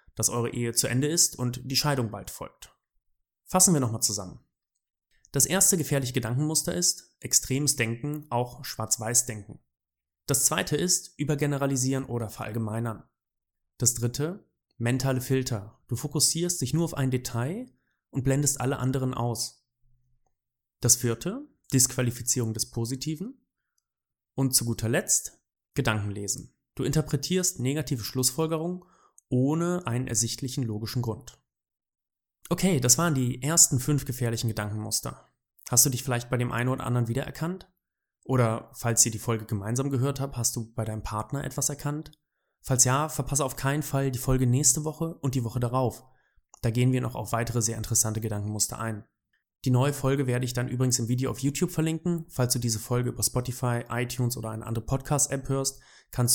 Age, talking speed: 30-49, 160 wpm